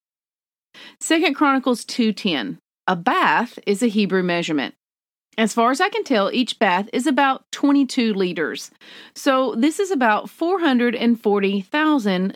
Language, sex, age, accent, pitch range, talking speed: English, female, 40-59, American, 190-265 Hz, 125 wpm